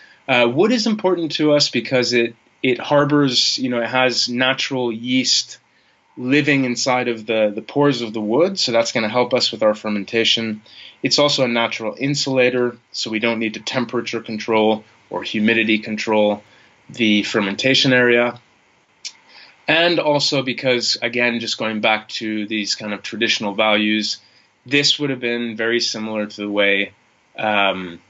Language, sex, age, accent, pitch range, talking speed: English, male, 20-39, American, 105-125 Hz, 160 wpm